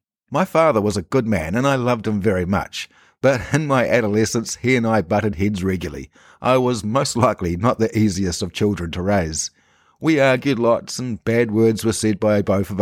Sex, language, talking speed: male, English, 205 wpm